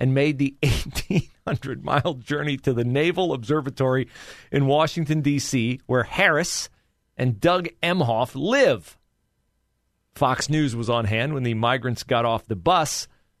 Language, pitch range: English, 110-140 Hz